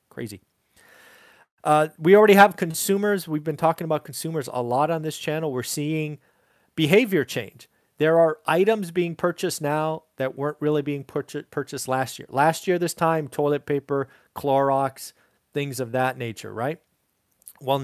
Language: English